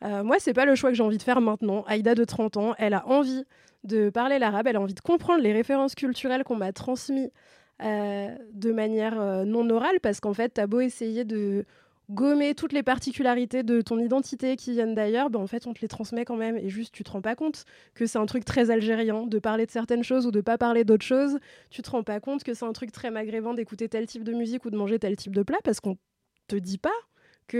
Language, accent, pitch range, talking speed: French, French, 210-260 Hz, 255 wpm